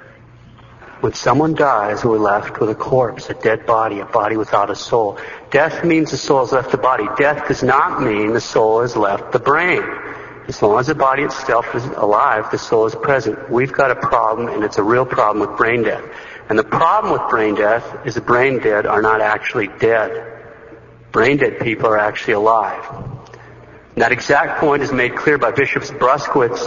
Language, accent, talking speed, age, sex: English, American, 195 wpm, 50-69, male